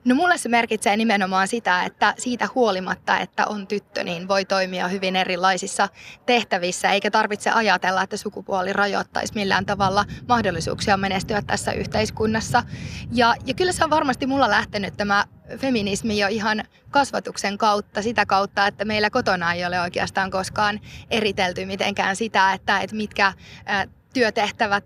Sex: female